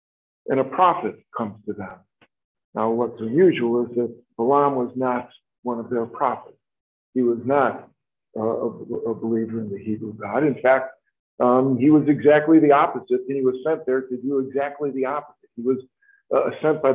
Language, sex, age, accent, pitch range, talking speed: English, male, 50-69, American, 110-135 Hz, 185 wpm